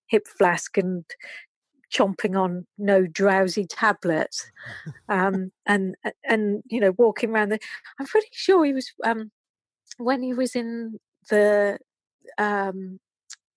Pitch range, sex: 195-230 Hz, female